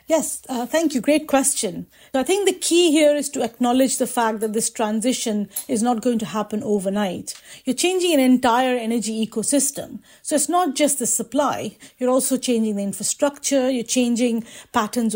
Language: English